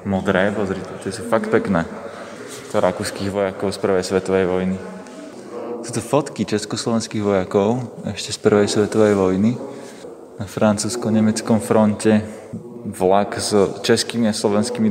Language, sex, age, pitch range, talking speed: Slovak, male, 20-39, 100-115 Hz, 120 wpm